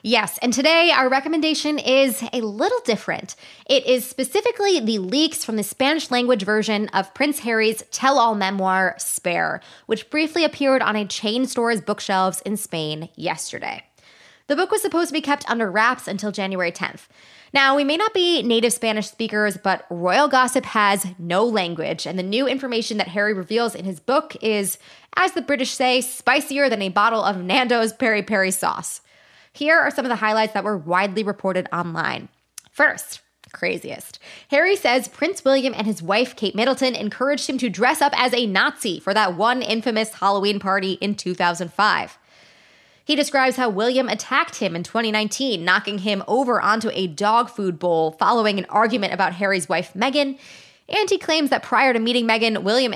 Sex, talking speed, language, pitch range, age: female, 175 wpm, English, 195-265 Hz, 20-39